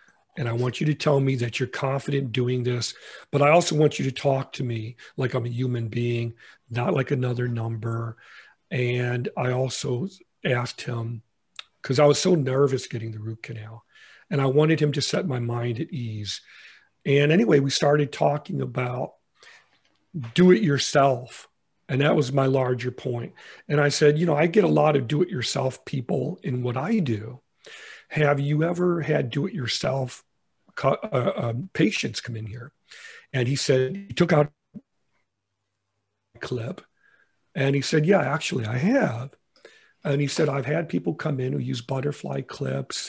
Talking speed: 175 wpm